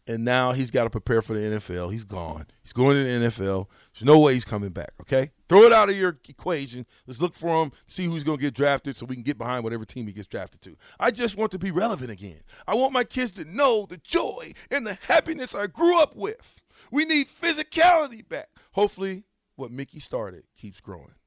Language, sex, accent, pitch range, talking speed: English, male, American, 120-180 Hz, 230 wpm